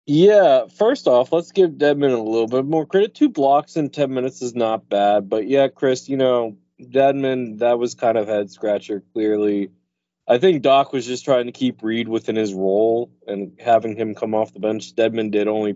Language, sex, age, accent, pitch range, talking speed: English, male, 20-39, American, 95-135 Hz, 205 wpm